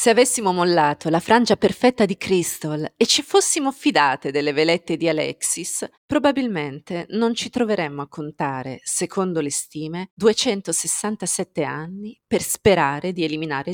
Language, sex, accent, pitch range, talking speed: Italian, female, native, 160-235 Hz, 135 wpm